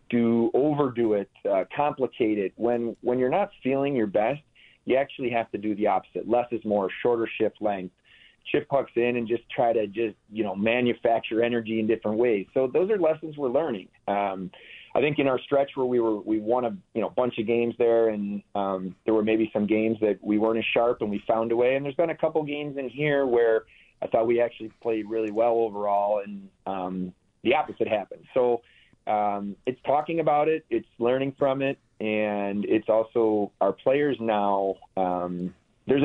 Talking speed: 205 wpm